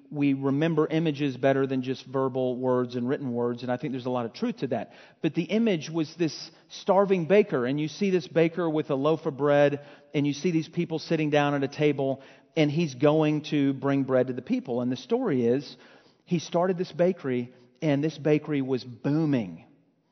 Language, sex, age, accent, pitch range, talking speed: English, male, 40-59, American, 155-205 Hz, 210 wpm